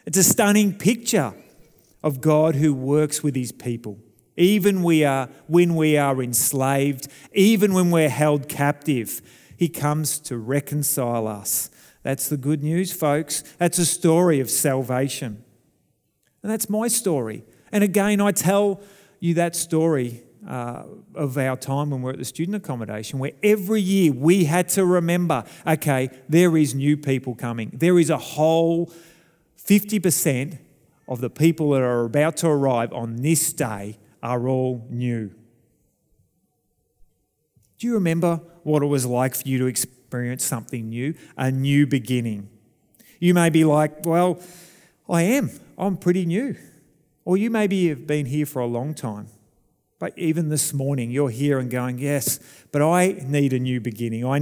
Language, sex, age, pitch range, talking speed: English, male, 40-59, 130-170 Hz, 155 wpm